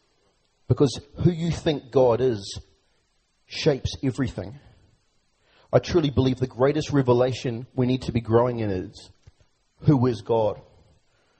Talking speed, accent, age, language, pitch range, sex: 125 wpm, Australian, 30-49, English, 110-135 Hz, male